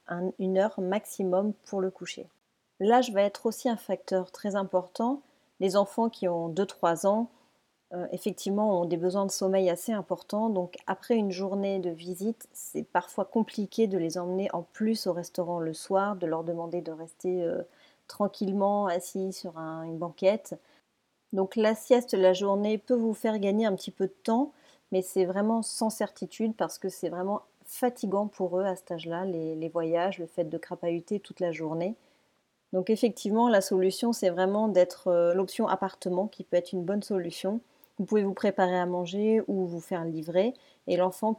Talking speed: 185 wpm